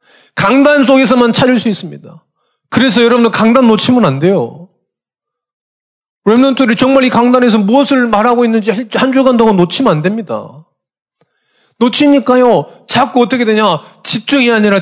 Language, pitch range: Korean, 145-235 Hz